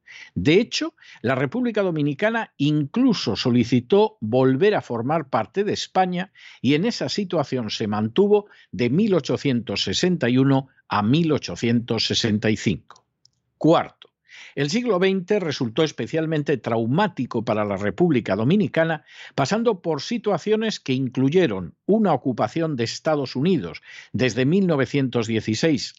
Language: Spanish